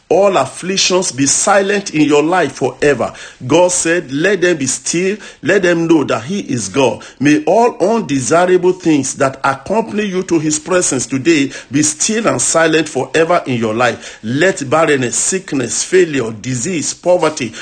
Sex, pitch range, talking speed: male, 140-190 Hz, 155 wpm